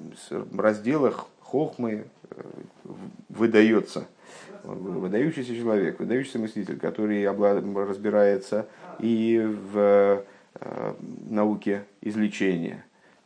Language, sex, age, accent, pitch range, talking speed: Russian, male, 50-69, native, 95-120 Hz, 65 wpm